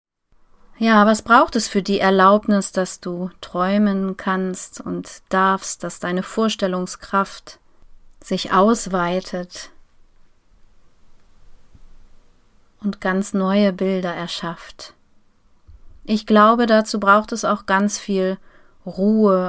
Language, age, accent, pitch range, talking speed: German, 30-49, German, 175-205 Hz, 100 wpm